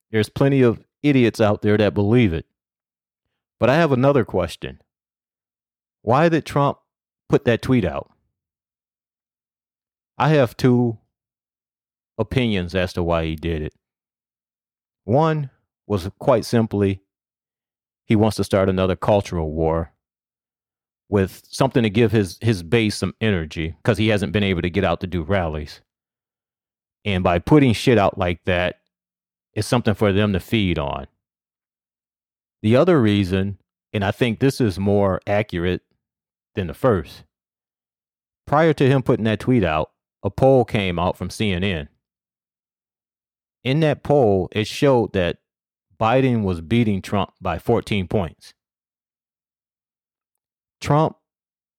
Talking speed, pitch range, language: 135 wpm, 90-120 Hz, English